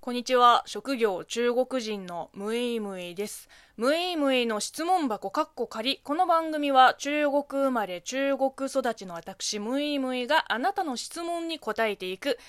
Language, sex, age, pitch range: Japanese, female, 20-39, 205-275 Hz